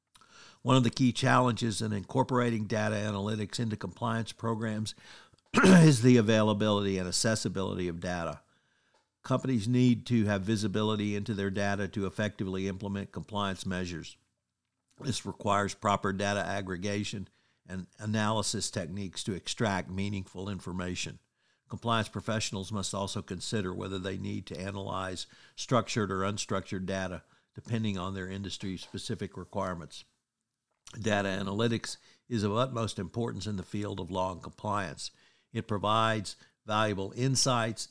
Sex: male